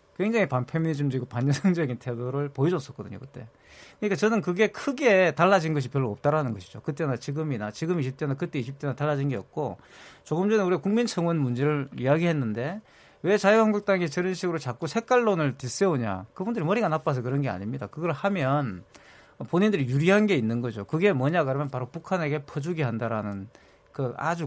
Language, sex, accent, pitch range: Korean, male, native, 130-185 Hz